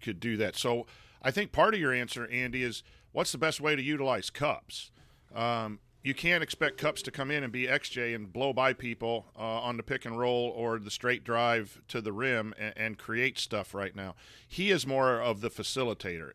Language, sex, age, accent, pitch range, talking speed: English, male, 40-59, American, 115-140 Hz, 215 wpm